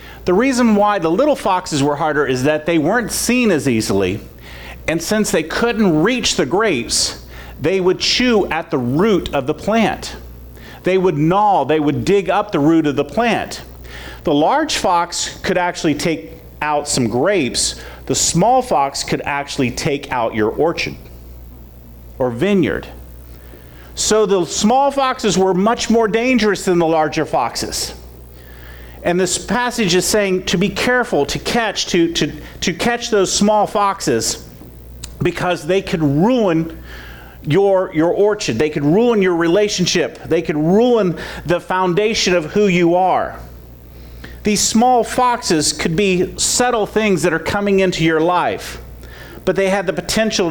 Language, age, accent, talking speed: English, 40-59, American, 155 wpm